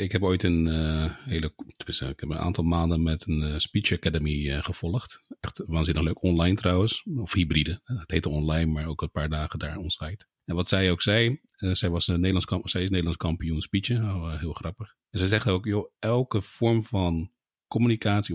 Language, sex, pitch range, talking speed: Dutch, male, 85-100 Hz, 215 wpm